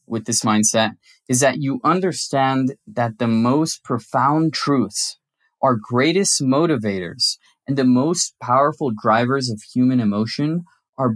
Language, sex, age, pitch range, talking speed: English, male, 20-39, 115-140 Hz, 130 wpm